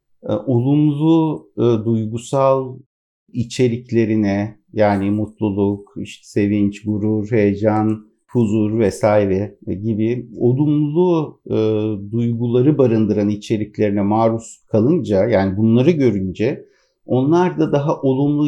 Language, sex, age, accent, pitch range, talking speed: Turkish, male, 50-69, native, 110-140 Hz, 90 wpm